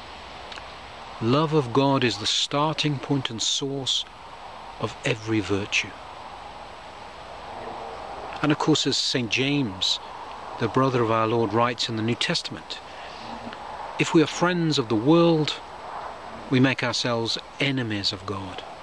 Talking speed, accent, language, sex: 130 wpm, British, English, male